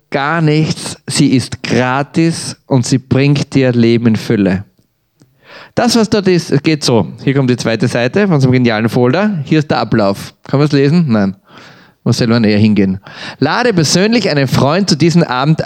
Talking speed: 185 wpm